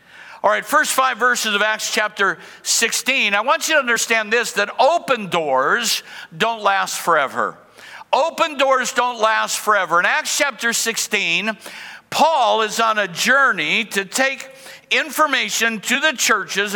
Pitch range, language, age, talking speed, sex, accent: 210-255 Hz, English, 60-79, 145 wpm, male, American